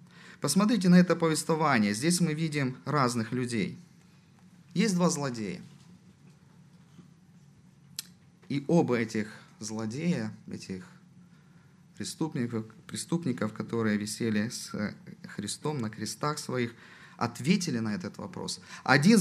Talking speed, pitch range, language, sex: 95 wpm, 135-180 Hz, Russian, male